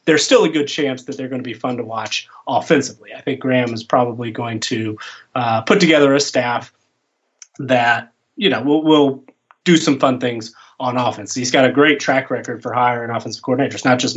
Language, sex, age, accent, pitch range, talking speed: English, male, 30-49, American, 120-140 Hz, 210 wpm